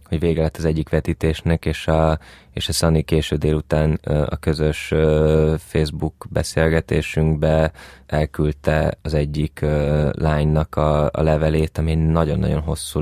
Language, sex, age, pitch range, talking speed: Hungarian, male, 20-39, 75-80 Hz, 125 wpm